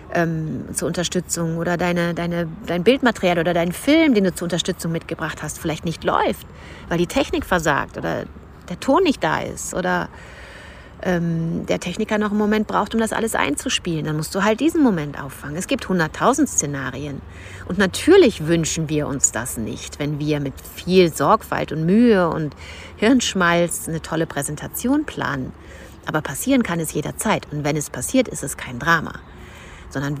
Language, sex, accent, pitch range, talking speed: German, female, German, 140-210 Hz, 165 wpm